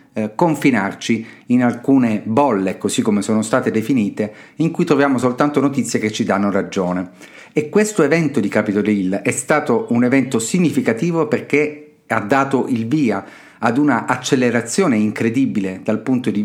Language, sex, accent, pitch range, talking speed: Italian, male, native, 110-145 Hz, 150 wpm